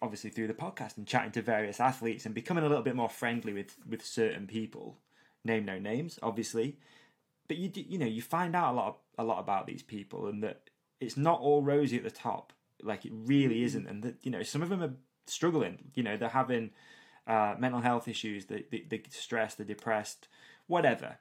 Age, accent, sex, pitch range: 20-39, British, male, 110-135 Hz